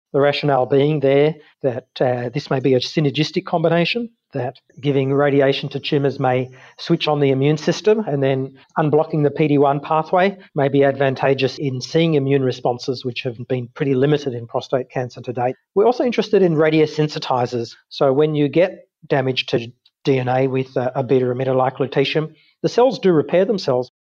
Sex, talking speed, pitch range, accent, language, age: male, 165 wpm, 130-150 Hz, Australian, English, 40-59